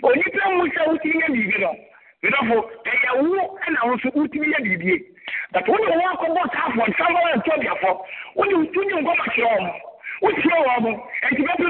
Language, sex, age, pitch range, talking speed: English, male, 50-69, 260-355 Hz, 180 wpm